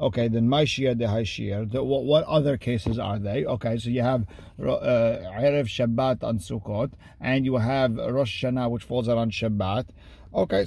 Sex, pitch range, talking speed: male, 115-145 Hz, 180 wpm